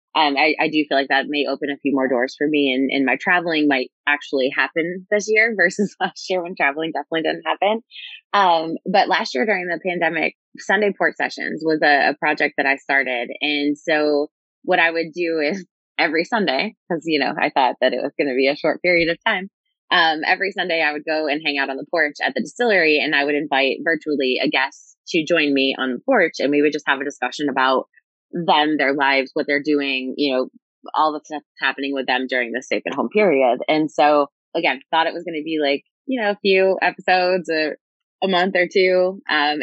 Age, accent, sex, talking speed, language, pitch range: 20-39, American, female, 230 wpm, English, 145-180 Hz